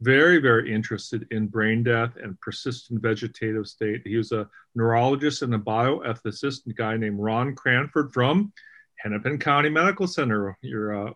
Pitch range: 110-125 Hz